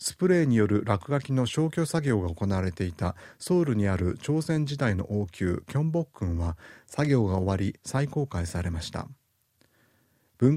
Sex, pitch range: male, 95-135 Hz